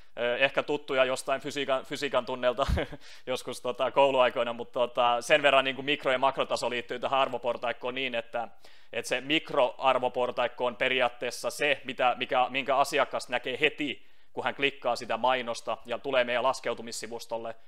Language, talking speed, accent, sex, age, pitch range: Finnish, 145 wpm, native, male, 30-49, 115-135 Hz